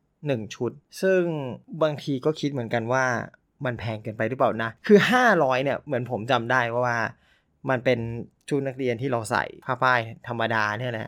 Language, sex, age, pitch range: Thai, male, 20-39, 125-155 Hz